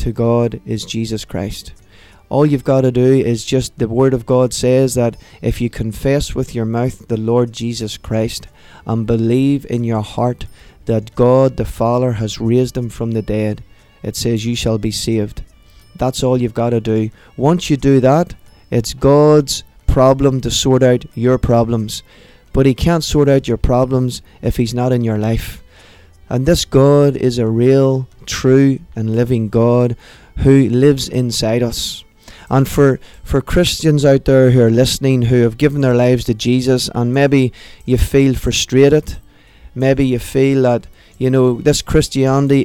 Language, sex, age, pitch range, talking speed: Tamil, male, 20-39, 115-135 Hz, 175 wpm